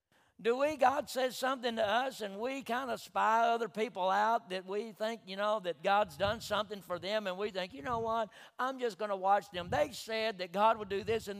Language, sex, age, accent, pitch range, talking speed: English, male, 60-79, American, 215-270 Hz, 240 wpm